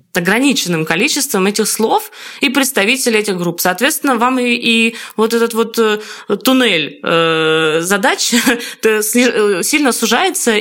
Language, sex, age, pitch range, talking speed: Russian, female, 20-39, 185-245 Hz, 125 wpm